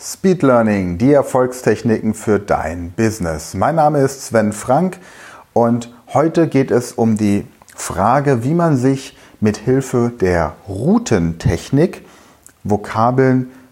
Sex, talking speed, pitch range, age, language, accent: male, 120 wpm, 95-130 Hz, 30-49, German, German